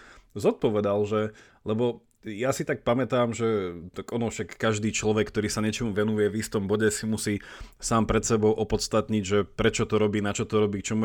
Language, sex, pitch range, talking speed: Slovak, male, 105-120 Hz, 190 wpm